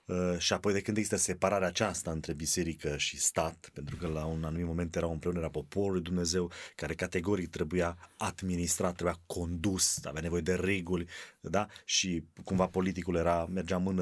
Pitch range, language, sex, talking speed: 90-115 Hz, Romanian, male, 165 wpm